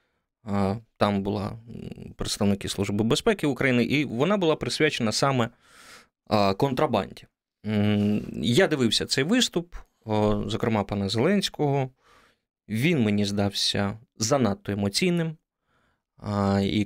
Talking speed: 90 wpm